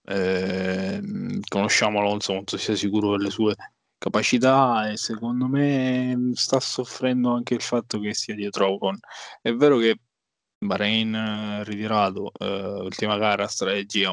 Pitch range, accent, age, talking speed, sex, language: 100-125 Hz, native, 20-39, 135 wpm, male, Italian